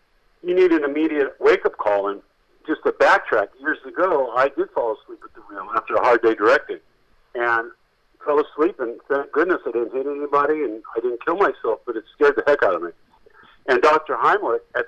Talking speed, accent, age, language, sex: 205 wpm, American, 50-69, English, male